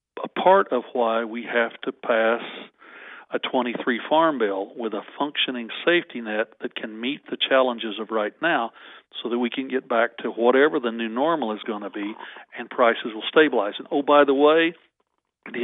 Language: English